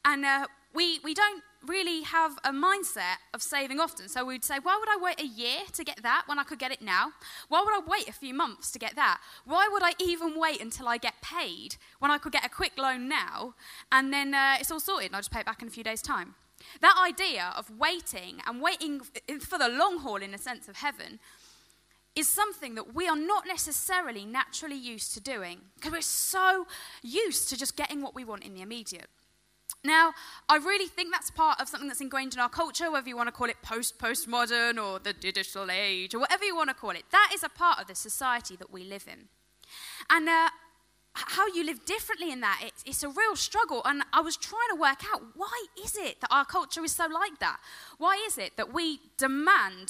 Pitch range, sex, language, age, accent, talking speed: 250-355 Hz, female, English, 10-29, British, 230 wpm